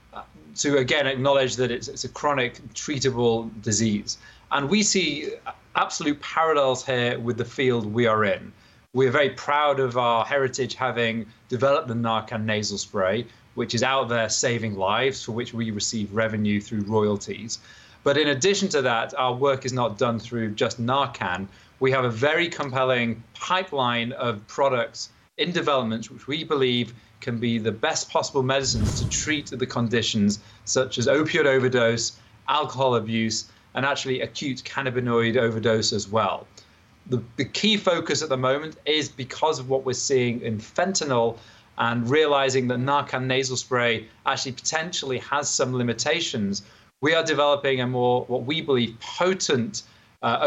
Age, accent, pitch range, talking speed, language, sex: 30-49, British, 115-140 Hz, 155 wpm, English, male